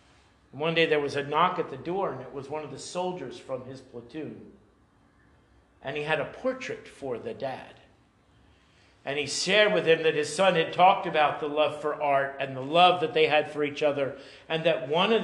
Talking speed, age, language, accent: 215 wpm, 50-69, English, American